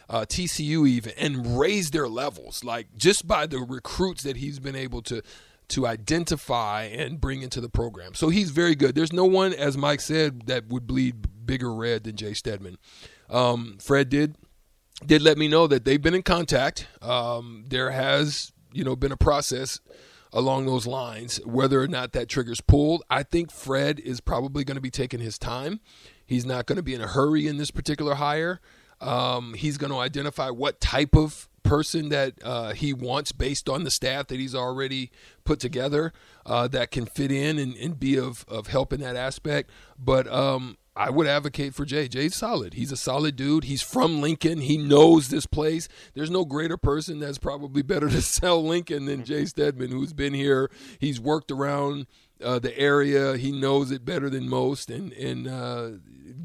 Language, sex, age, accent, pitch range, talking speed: English, male, 40-59, American, 125-150 Hz, 190 wpm